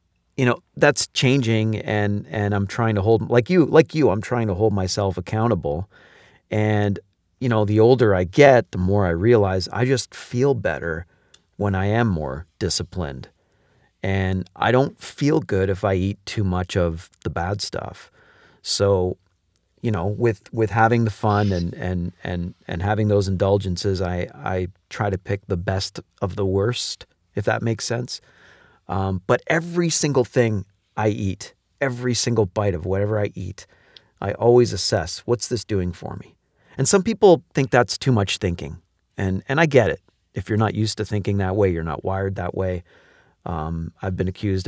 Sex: male